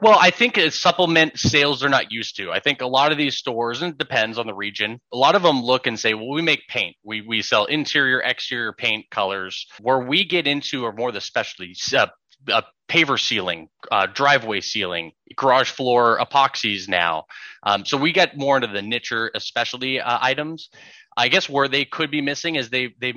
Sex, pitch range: male, 105-140 Hz